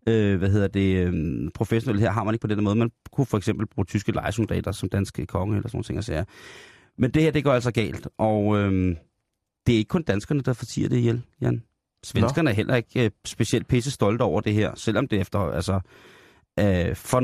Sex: male